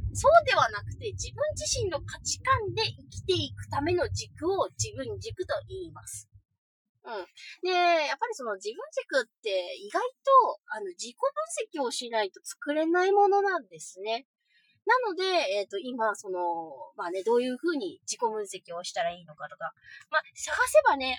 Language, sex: Japanese, female